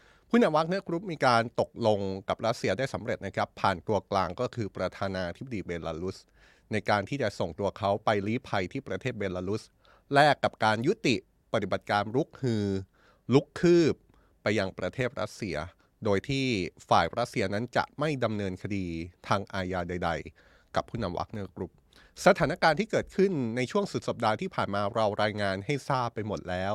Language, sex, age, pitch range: Thai, male, 30-49, 95-130 Hz